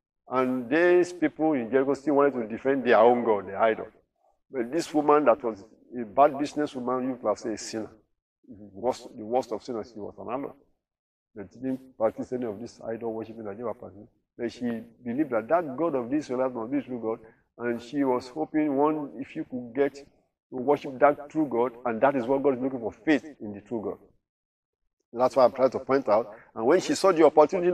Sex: male